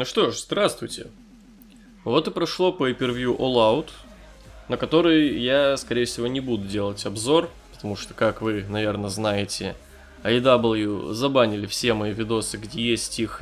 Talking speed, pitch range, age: 150 wpm, 105-125 Hz, 20-39